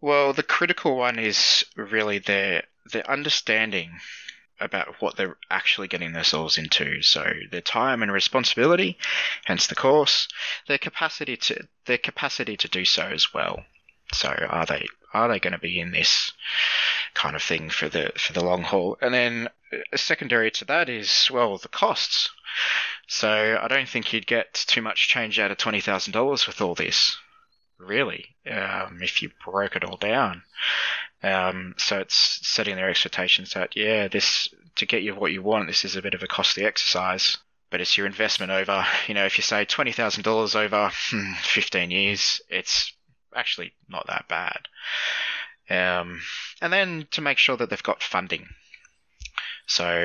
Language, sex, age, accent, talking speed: English, male, 20-39, Australian, 170 wpm